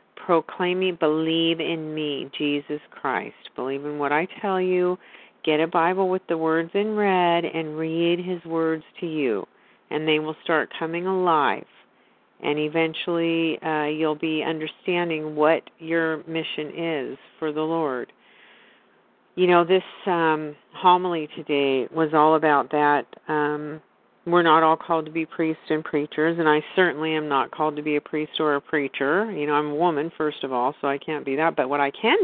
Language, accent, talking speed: English, American, 180 wpm